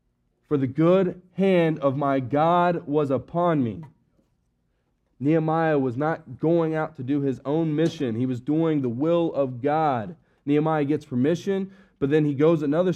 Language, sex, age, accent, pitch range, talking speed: English, male, 30-49, American, 130-175 Hz, 160 wpm